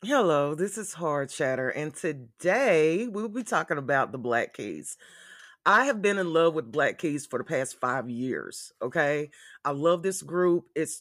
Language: English